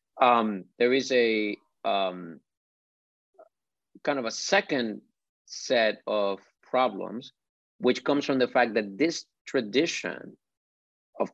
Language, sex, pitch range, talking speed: English, male, 105-135 Hz, 110 wpm